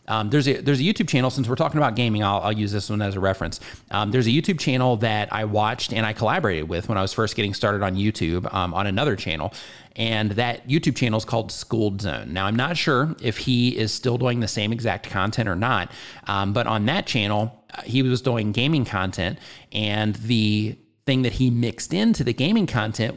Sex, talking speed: male, 230 wpm